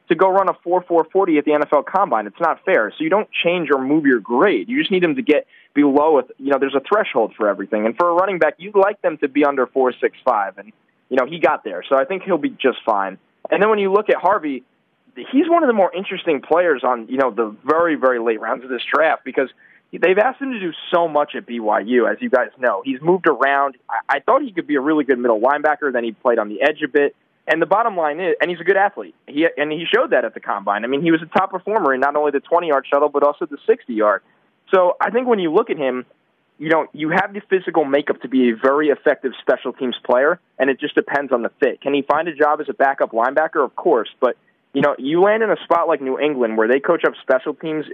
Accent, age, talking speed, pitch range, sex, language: American, 20-39, 275 wpm, 130-185 Hz, male, English